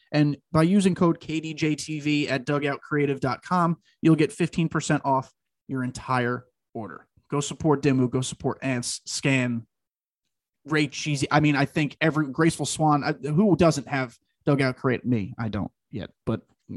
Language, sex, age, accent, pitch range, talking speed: English, male, 30-49, American, 130-165 Hz, 145 wpm